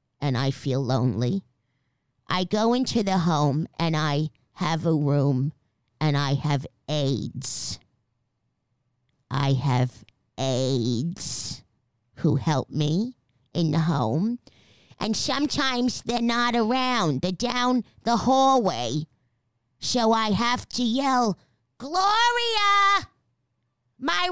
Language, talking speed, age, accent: English, 105 wpm, 50-69, American